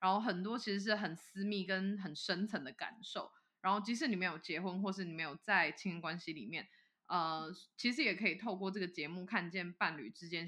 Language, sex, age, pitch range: Chinese, female, 20-39, 180-215 Hz